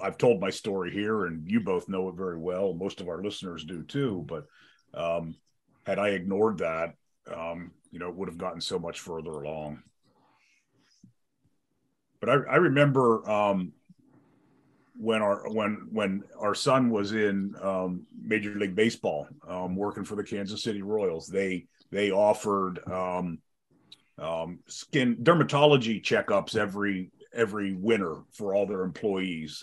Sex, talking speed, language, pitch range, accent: male, 150 wpm, English, 95-115 Hz, American